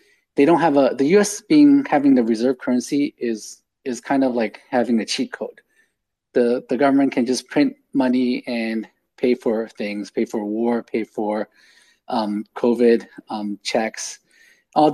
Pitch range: 110-130 Hz